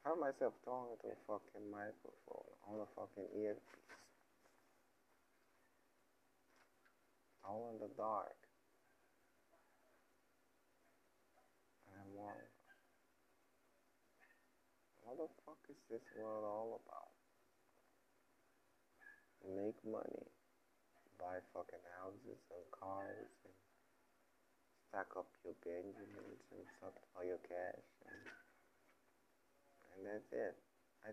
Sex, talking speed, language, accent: male, 95 wpm, English, American